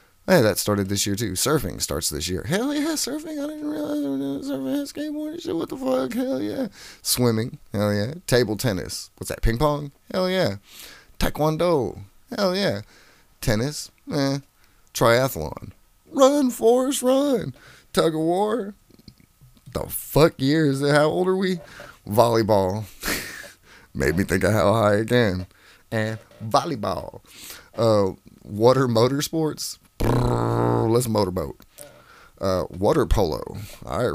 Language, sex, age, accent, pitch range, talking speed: English, male, 30-49, American, 95-160 Hz, 140 wpm